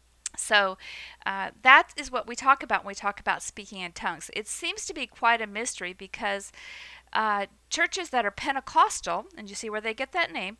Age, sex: 50-69, female